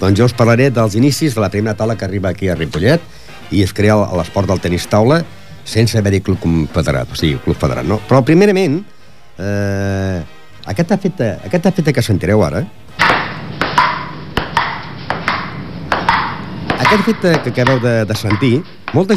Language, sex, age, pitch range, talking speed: Italian, male, 50-69, 95-135 Hz, 155 wpm